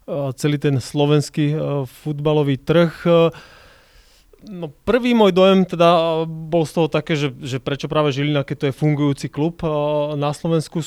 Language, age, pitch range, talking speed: Slovak, 30-49, 140-160 Hz, 145 wpm